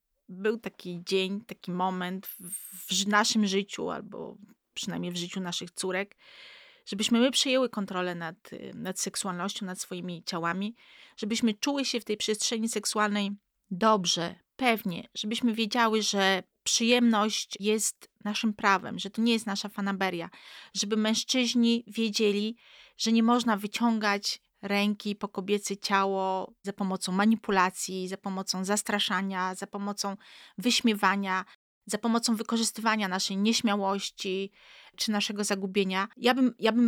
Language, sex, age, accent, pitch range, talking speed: Polish, female, 30-49, native, 195-235 Hz, 130 wpm